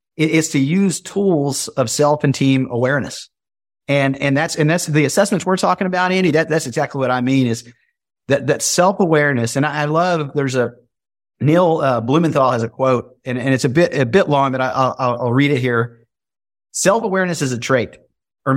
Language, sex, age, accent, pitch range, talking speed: English, male, 50-69, American, 135-170 Hz, 205 wpm